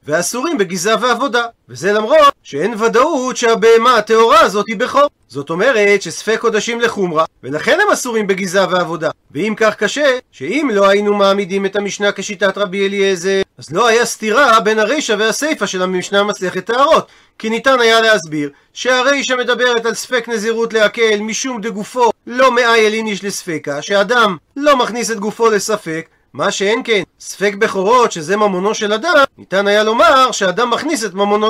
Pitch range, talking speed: 200-240 Hz, 160 wpm